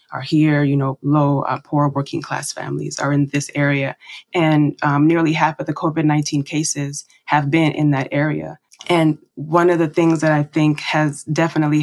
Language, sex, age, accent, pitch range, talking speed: English, female, 20-39, American, 145-160 Hz, 190 wpm